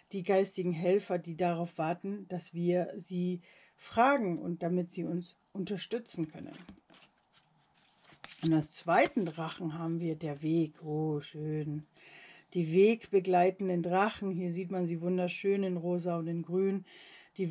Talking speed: 135 wpm